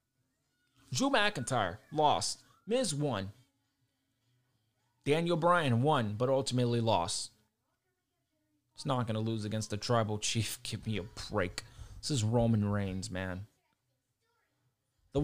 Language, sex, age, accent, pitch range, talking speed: English, male, 20-39, American, 105-130 Hz, 120 wpm